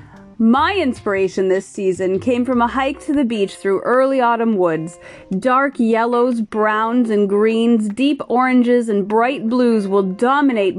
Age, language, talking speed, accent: 30-49, English, 150 wpm, American